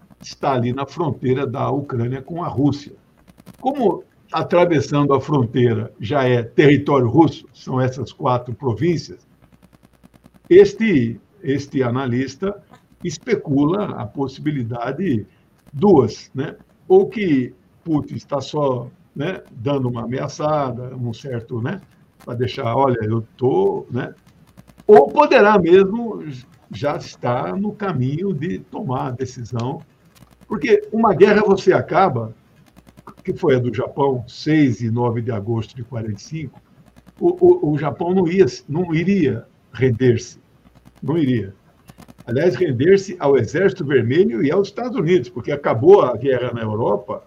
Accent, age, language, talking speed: Brazilian, 60-79, Portuguese, 130 wpm